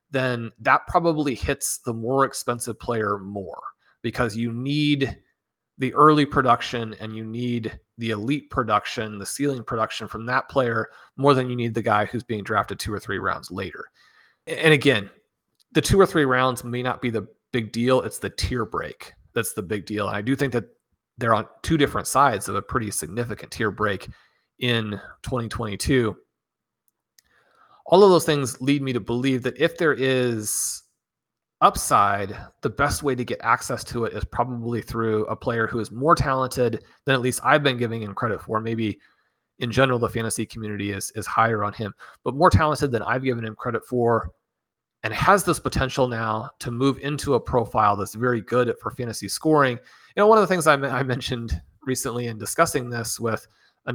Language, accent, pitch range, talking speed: English, American, 110-130 Hz, 190 wpm